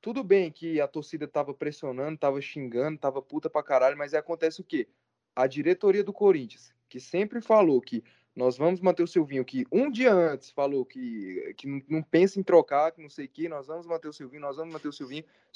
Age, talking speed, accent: 20-39, 225 wpm, Brazilian